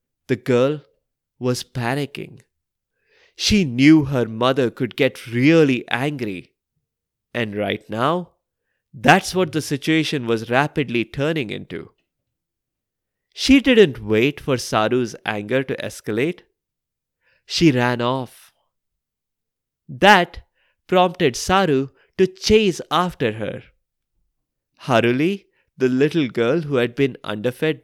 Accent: Indian